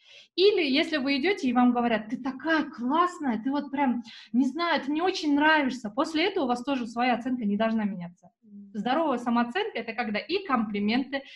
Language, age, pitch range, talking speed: Russian, 20-39, 220-265 Hz, 185 wpm